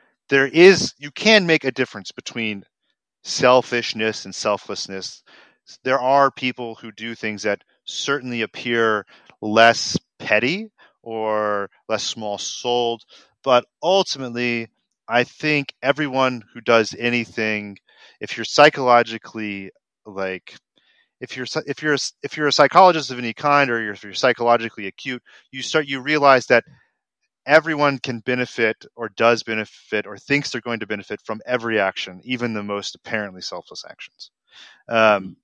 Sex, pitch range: male, 110-130 Hz